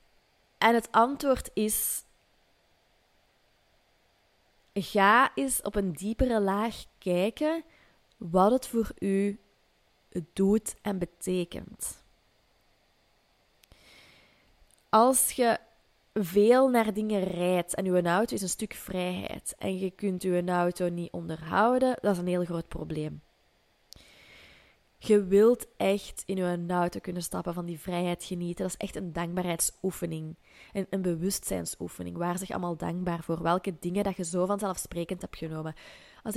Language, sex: Dutch, female